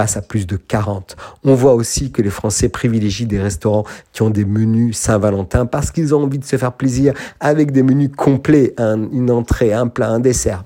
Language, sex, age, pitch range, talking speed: French, male, 50-69, 105-125 Hz, 210 wpm